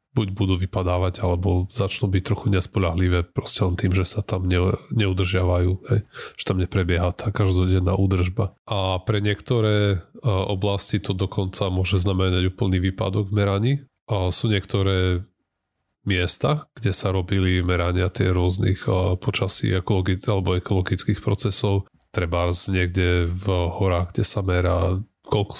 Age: 30-49